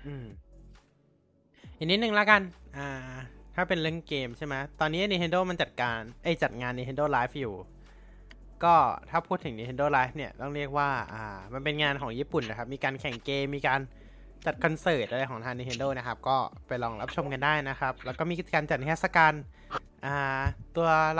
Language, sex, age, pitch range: Thai, male, 20-39, 120-155 Hz